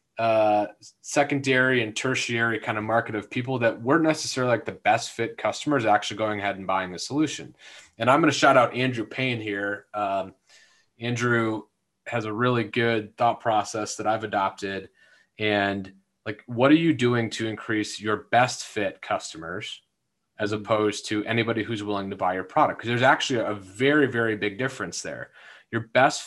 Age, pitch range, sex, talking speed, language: 30-49, 105-125 Hz, male, 175 wpm, English